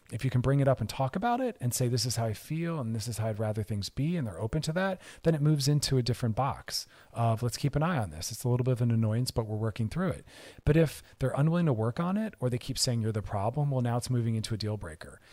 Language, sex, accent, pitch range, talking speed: English, male, American, 100-125 Hz, 310 wpm